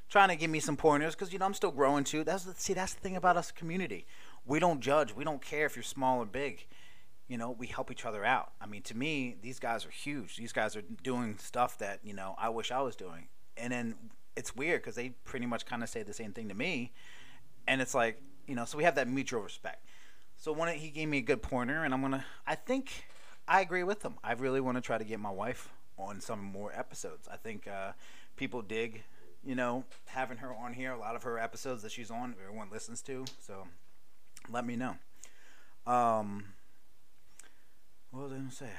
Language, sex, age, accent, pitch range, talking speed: English, male, 30-49, American, 105-140 Hz, 240 wpm